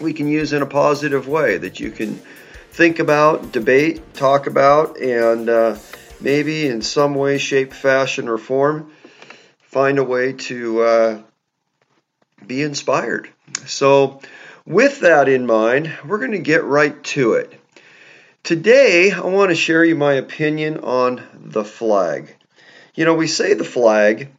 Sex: male